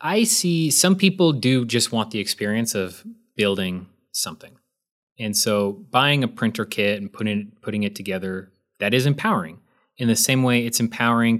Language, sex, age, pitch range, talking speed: English, male, 30-49, 100-130 Hz, 175 wpm